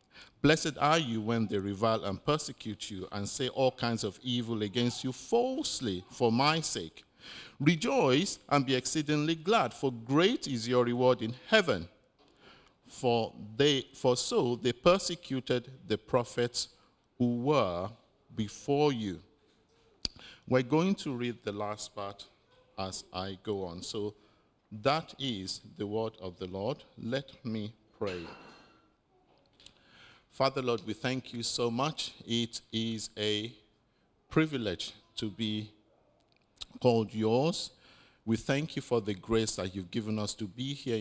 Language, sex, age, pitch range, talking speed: English, male, 50-69, 105-130 Hz, 140 wpm